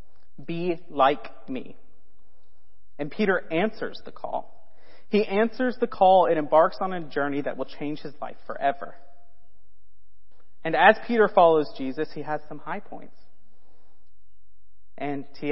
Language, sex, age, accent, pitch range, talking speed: English, male, 30-49, American, 120-160 Hz, 135 wpm